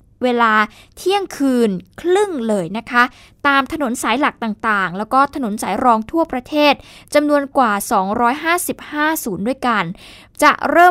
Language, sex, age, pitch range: Thai, female, 20-39, 215-275 Hz